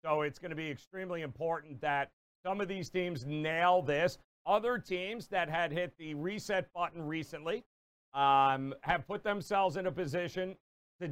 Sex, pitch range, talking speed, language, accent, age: male, 140-180 Hz, 165 wpm, English, American, 50-69